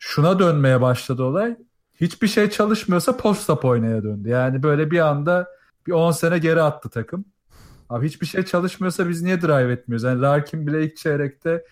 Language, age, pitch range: Turkish, 40-59, 125-165 Hz